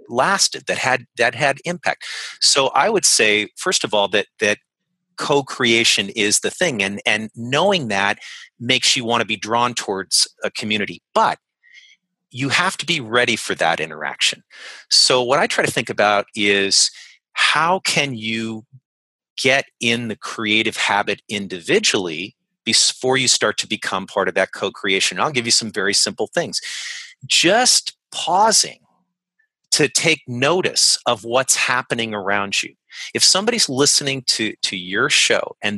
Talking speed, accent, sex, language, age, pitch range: 155 wpm, American, male, English, 40-59, 110-160 Hz